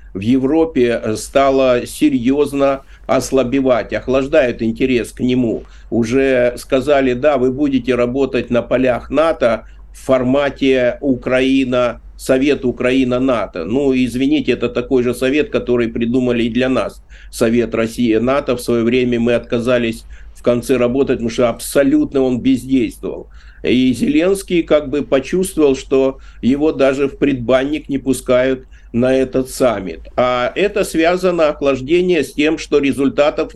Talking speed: 130 wpm